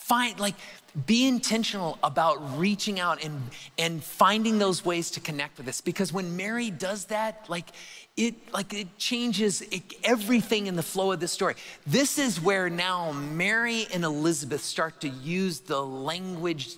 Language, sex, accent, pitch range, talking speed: English, male, American, 145-205 Hz, 160 wpm